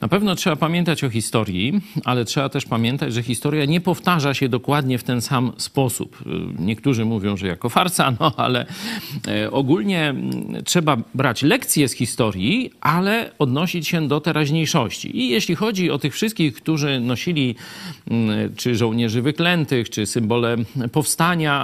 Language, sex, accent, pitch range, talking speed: Polish, male, native, 120-165 Hz, 145 wpm